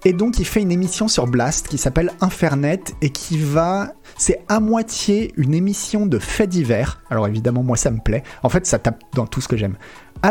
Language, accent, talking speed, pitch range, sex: French, French, 220 wpm, 115-155 Hz, male